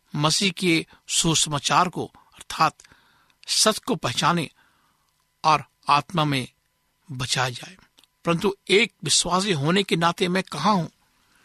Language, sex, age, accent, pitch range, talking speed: Hindi, male, 60-79, native, 150-185 Hz, 115 wpm